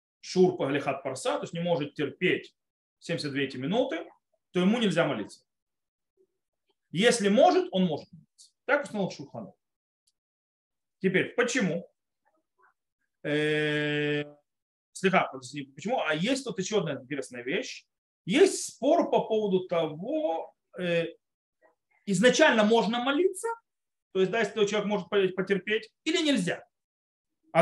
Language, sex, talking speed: Russian, male, 110 wpm